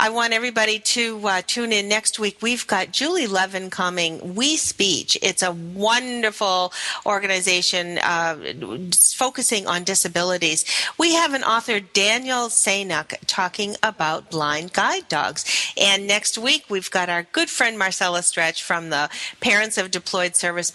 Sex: female